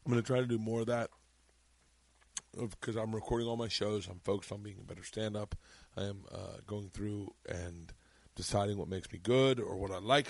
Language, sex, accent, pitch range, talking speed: English, male, American, 95-120 Hz, 215 wpm